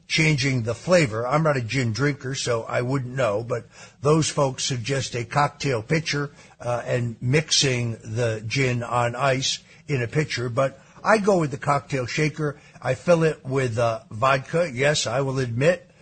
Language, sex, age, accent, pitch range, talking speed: English, male, 60-79, American, 125-160 Hz, 170 wpm